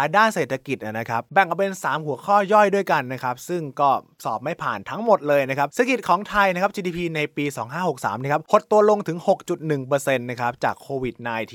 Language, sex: Thai, male